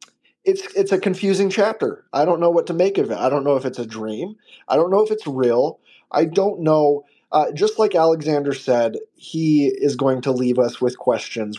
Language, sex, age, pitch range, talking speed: English, male, 20-39, 140-175 Hz, 215 wpm